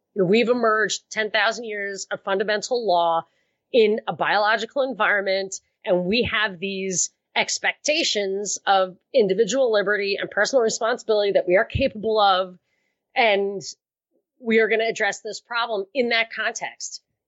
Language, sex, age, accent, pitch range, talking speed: English, female, 30-49, American, 190-235 Hz, 135 wpm